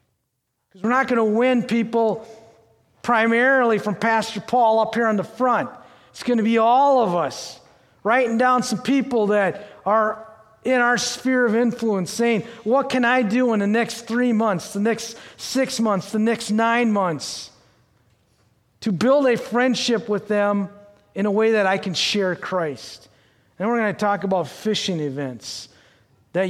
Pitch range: 145-220 Hz